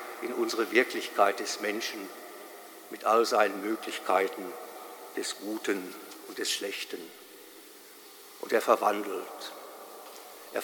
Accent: German